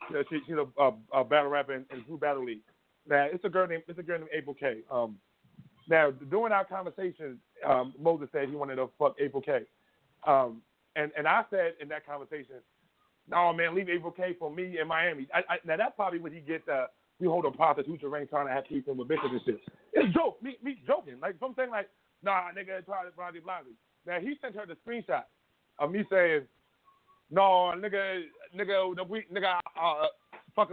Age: 30-49